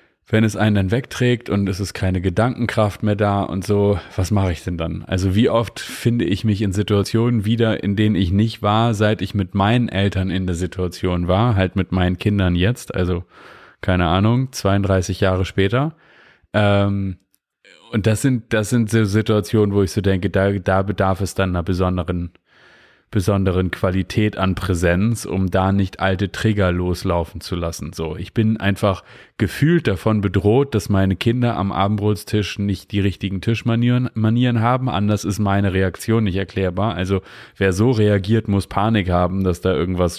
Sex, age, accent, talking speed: male, 30-49, German, 175 wpm